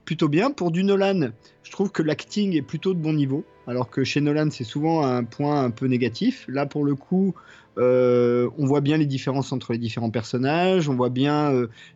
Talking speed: 215 wpm